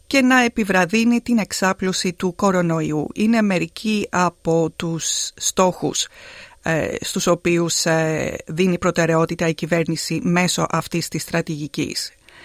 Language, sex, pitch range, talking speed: Greek, female, 175-230 Hz, 115 wpm